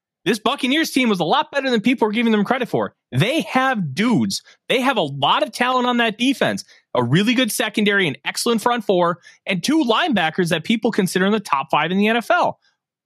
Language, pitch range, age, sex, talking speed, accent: English, 145-205 Hz, 30-49, male, 215 wpm, American